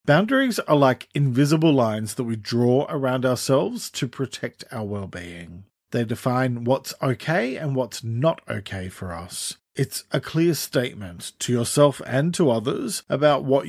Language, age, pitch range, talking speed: English, 40-59, 110-150 Hz, 155 wpm